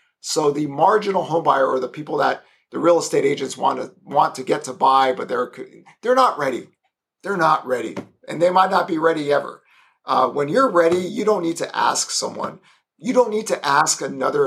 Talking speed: 210 wpm